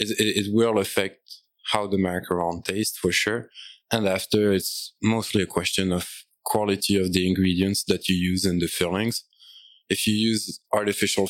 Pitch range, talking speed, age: 95-105 Hz, 165 wpm, 20-39